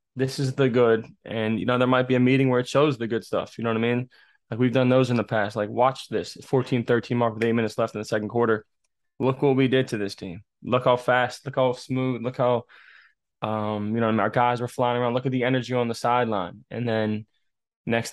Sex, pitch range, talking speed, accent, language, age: male, 115-130 Hz, 260 wpm, American, English, 20-39